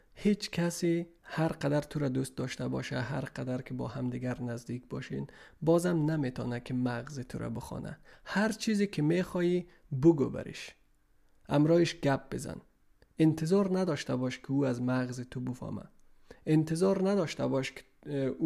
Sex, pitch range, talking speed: male, 130-180 Hz, 145 wpm